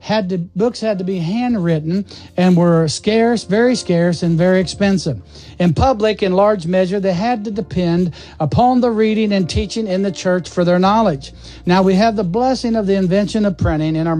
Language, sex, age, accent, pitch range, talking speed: English, male, 60-79, American, 170-220 Hz, 195 wpm